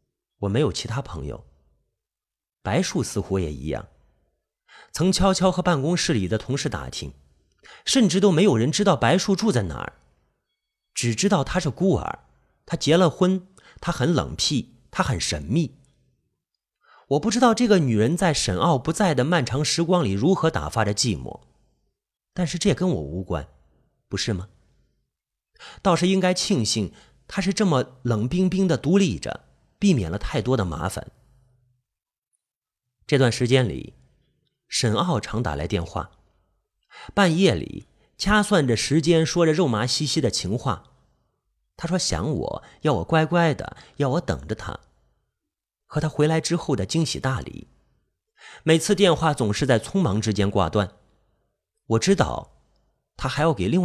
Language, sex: Chinese, male